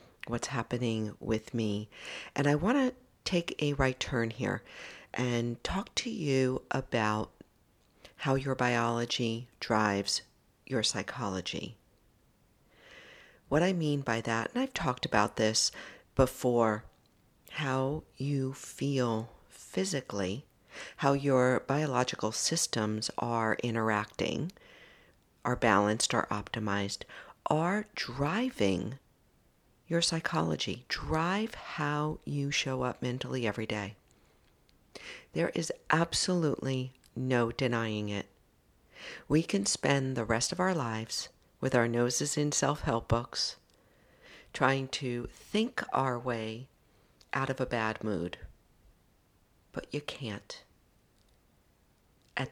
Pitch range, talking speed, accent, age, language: 115-145 Hz, 110 wpm, American, 50-69, English